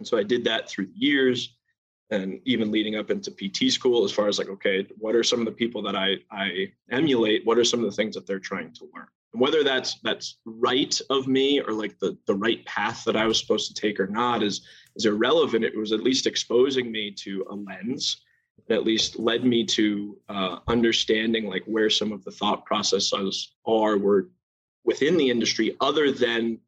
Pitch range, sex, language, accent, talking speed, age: 105-130 Hz, male, English, American, 215 wpm, 20-39